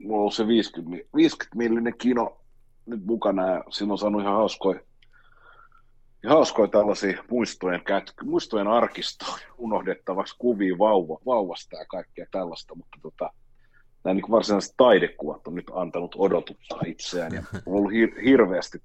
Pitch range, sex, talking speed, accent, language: 85-120 Hz, male, 130 wpm, native, Finnish